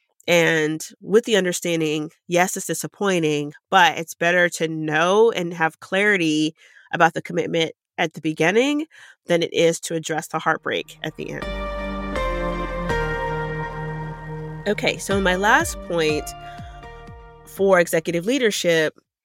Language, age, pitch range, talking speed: English, 30-49, 160-205 Hz, 120 wpm